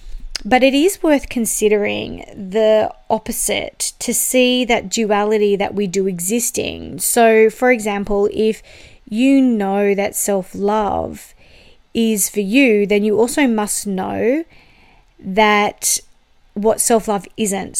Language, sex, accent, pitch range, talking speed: English, female, Australian, 195-230 Hz, 120 wpm